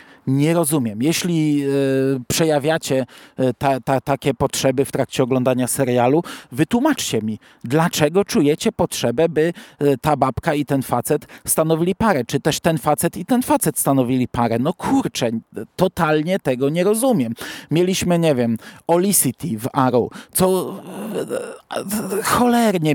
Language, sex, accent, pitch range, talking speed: Polish, male, native, 135-170 Hz, 120 wpm